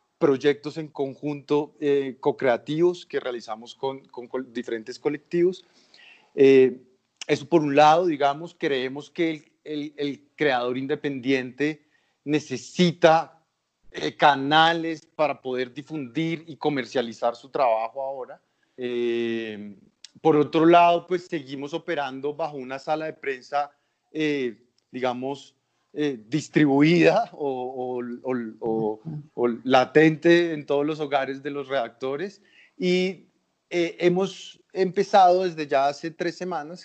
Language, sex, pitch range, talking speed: Spanish, male, 130-160 Hz, 120 wpm